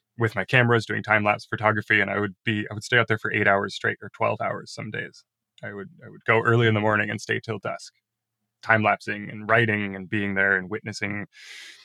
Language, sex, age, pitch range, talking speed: English, male, 20-39, 100-115 Hz, 230 wpm